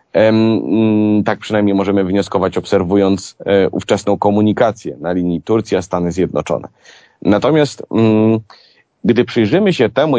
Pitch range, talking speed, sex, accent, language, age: 100-125 Hz, 95 wpm, male, native, Polish, 30-49